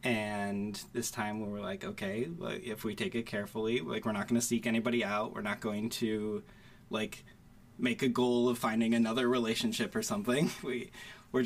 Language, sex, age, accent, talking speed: English, male, 20-39, American, 185 wpm